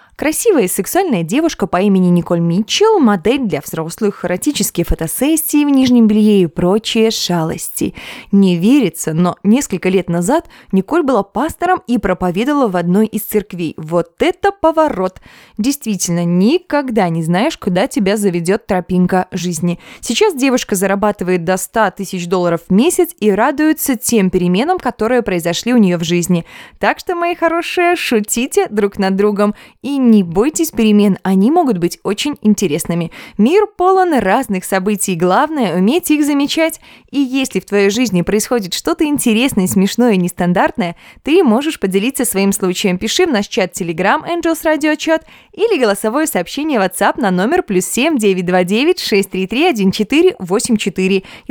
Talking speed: 145 wpm